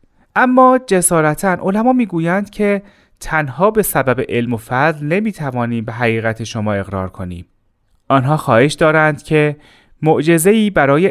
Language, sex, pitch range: Persian, male, 115-170 Hz